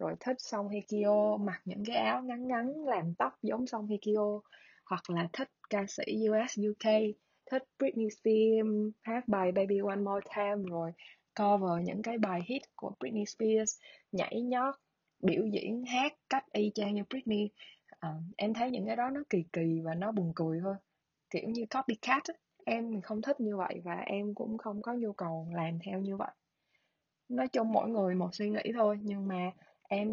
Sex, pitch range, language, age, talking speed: female, 180-220 Hz, Vietnamese, 20-39, 190 wpm